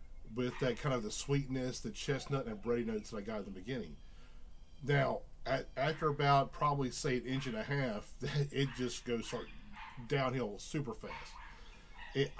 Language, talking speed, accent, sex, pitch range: English, 180 wpm, American, male, 120-145 Hz